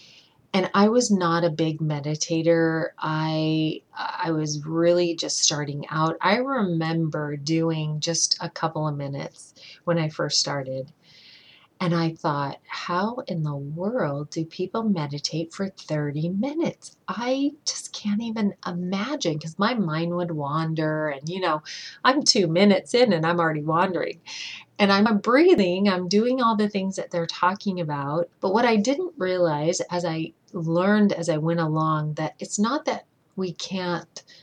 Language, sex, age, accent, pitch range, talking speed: English, female, 30-49, American, 155-185 Hz, 155 wpm